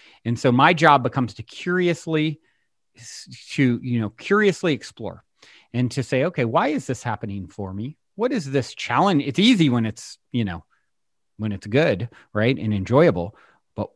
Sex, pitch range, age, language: male, 115-145 Hz, 30-49, English